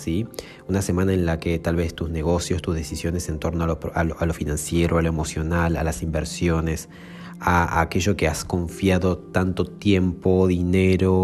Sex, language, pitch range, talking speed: male, Spanish, 85-100 Hz, 175 wpm